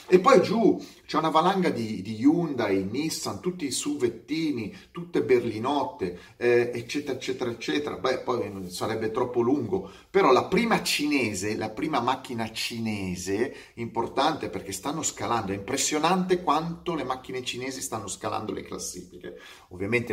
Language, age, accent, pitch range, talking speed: Italian, 30-49, native, 110-170 Hz, 140 wpm